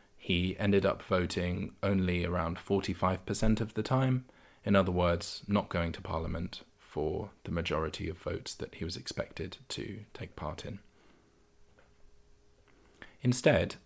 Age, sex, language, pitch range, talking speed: 20-39, male, English, 85-100 Hz, 135 wpm